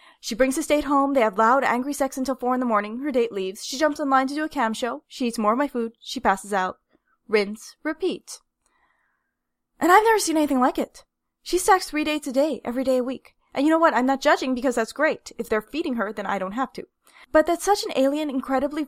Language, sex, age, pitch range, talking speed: English, female, 20-39, 225-315 Hz, 250 wpm